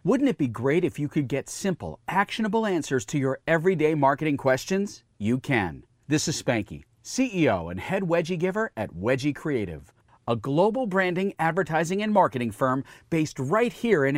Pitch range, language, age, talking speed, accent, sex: 130-190 Hz, English, 40-59, 170 wpm, American, male